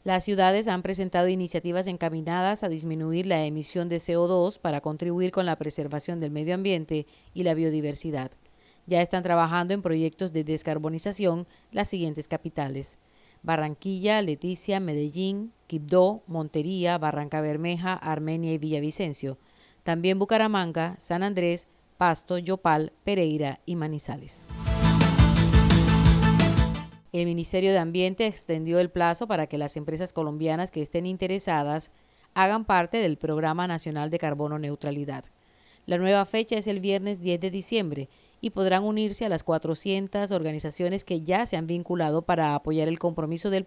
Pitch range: 155-190 Hz